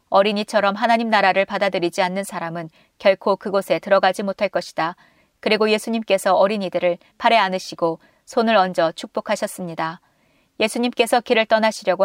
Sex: female